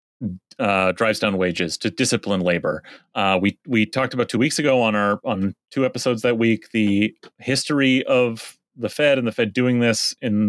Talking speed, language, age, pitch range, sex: 190 wpm, English, 30-49, 105-135 Hz, male